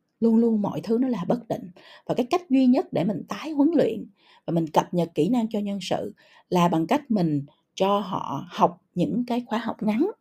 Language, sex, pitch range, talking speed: Vietnamese, female, 195-275 Hz, 230 wpm